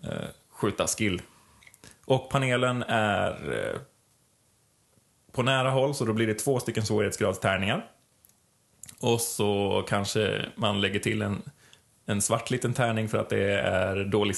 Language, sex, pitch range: Swedish, male, 105-135 Hz